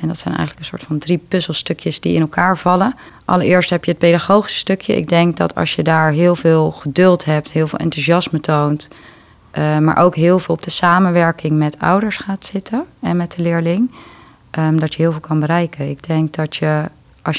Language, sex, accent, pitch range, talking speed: English, female, Dutch, 150-175 Hz, 205 wpm